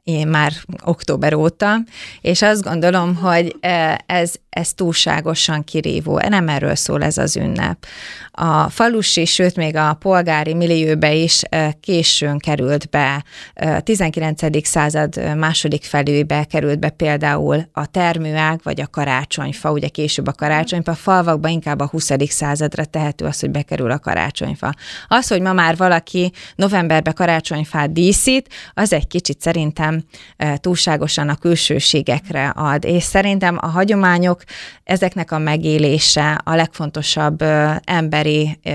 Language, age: Hungarian, 30-49